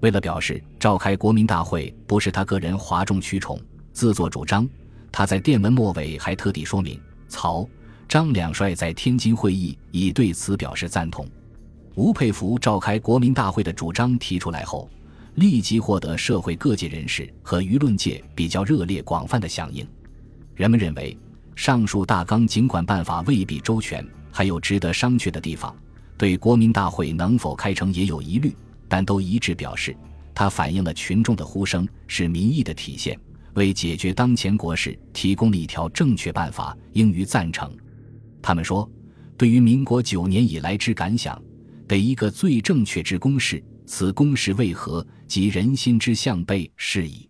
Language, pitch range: Chinese, 85-115 Hz